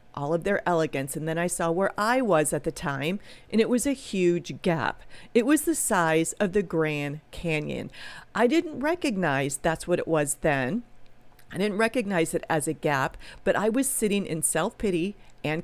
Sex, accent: female, American